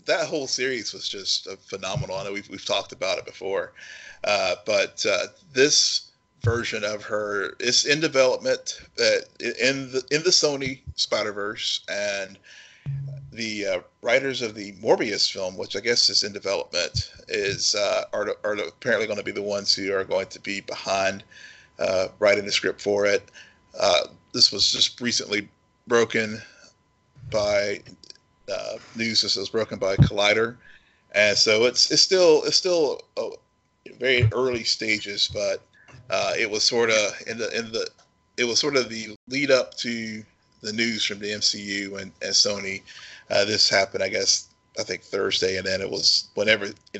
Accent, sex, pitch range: American, male, 100-145 Hz